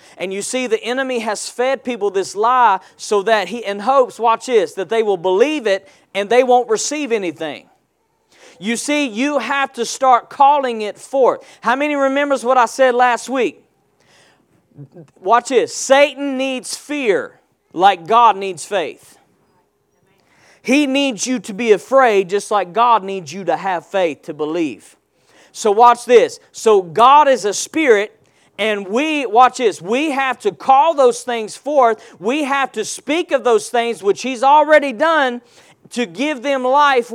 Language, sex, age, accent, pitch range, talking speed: English, male, 40-59, American, 215-280 Hz, 165 wpm